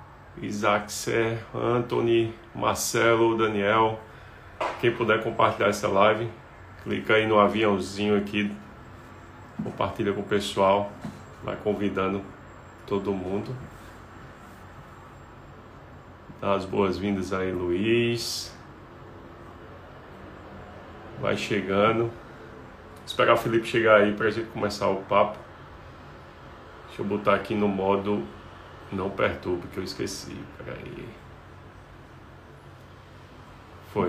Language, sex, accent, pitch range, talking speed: Portuguese, male, Brazilian, 95-115 Hz, 95 wpm